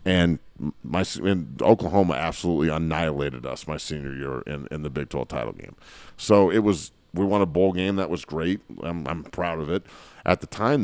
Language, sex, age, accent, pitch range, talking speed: English, male, 40-59, American, 80-95 Hz, 200 wpm